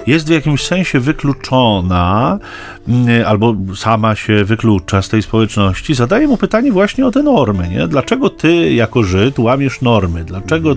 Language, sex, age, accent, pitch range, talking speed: Polish, male, 40-59, native, 110-160 Hz, 150 wpm